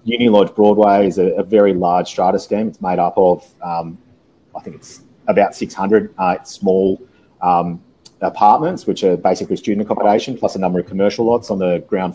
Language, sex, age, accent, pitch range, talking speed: English, male, 30-49, Australian, 90-105 Hz, 190 wpm